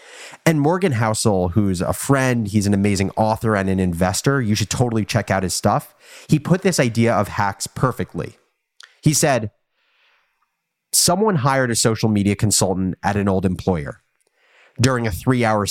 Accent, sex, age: American, male, 30-49